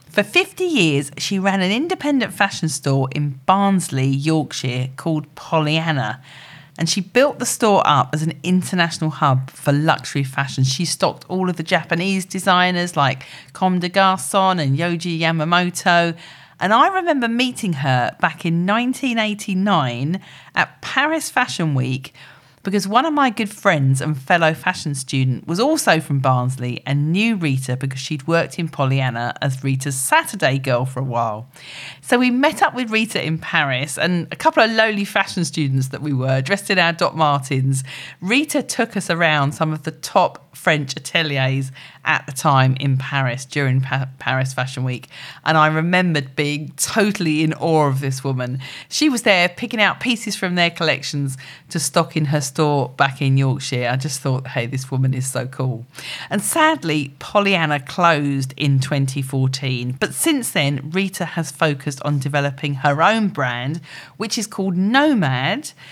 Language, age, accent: English, 40-59, British